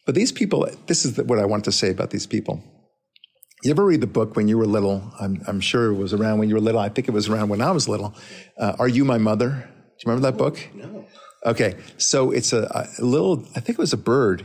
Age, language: 50-69, English